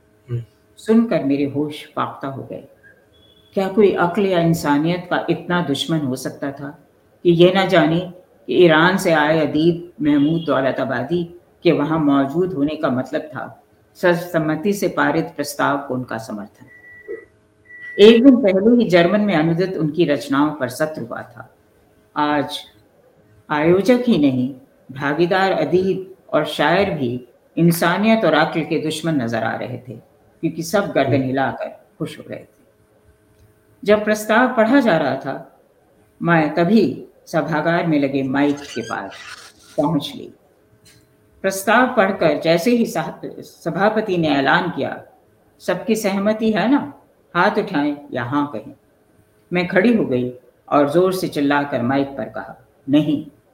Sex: female